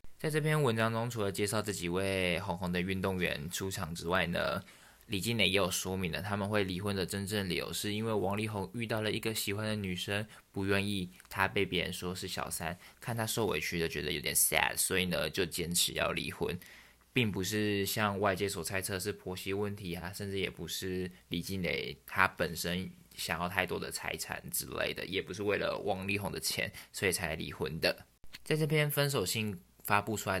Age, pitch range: 20-39, 90-100 Hz